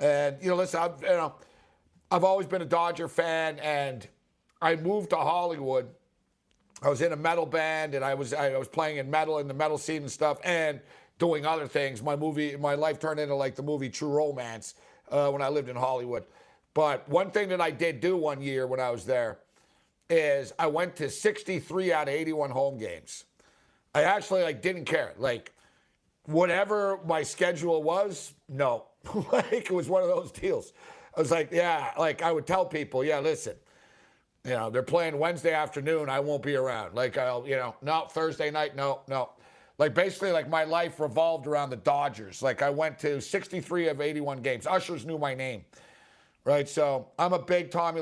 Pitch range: 140-170 Hz